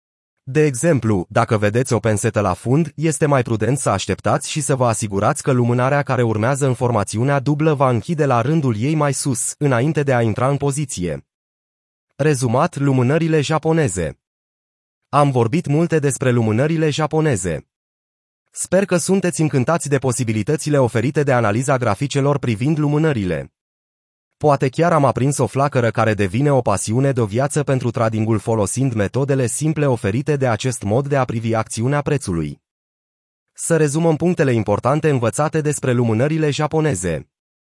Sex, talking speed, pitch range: male, 150 wpm, 115-150 Hz